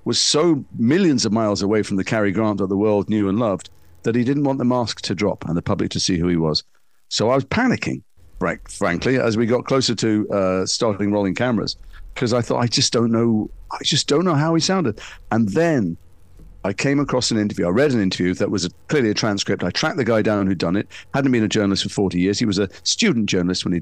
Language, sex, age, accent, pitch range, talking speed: English, male, 50-69, British, 90-120 Hz, 250 wpm